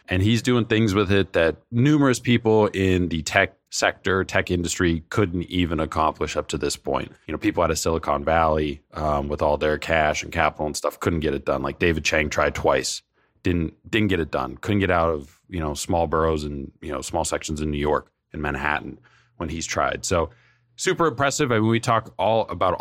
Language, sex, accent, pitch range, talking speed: English, male, American, 80-105 Hz, 215 wpm